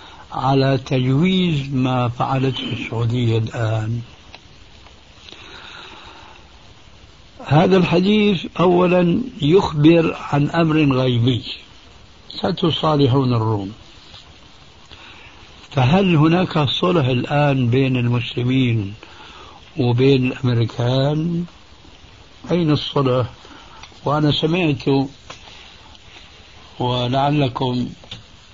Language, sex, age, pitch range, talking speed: Arabic, male, 60-79, 120-155 Hz, 60 wpm